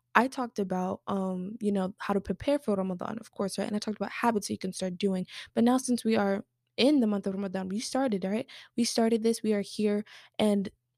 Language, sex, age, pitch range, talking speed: English, female, 20-39, 200-225 Hz, 240 wpm